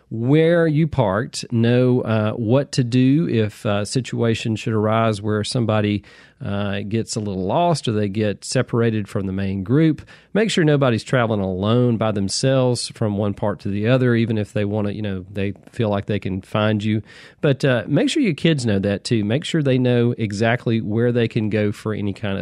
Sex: male